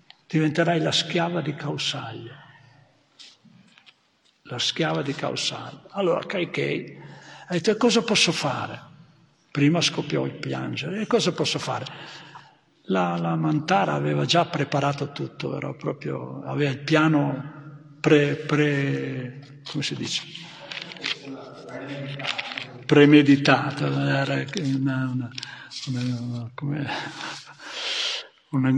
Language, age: Italian, 60-79